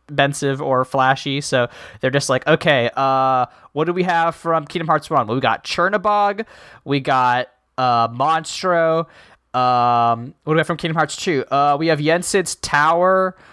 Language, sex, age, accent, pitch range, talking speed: English, male, 20-39, American, 130-175 Hz, 165 wpm